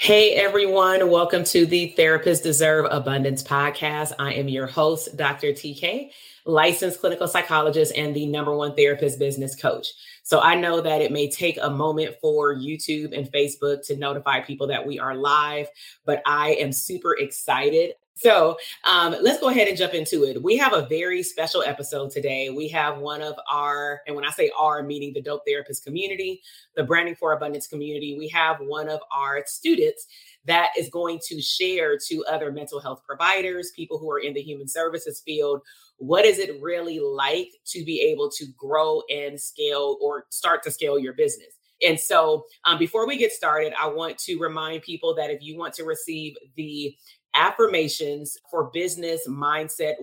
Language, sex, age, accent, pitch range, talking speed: English, female, 30-49, American, 145-185 Hz, 180 wpm